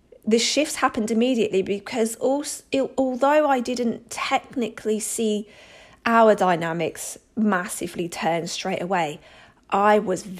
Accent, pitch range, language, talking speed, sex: British, 180-220 Hz, English, 110 wpm, female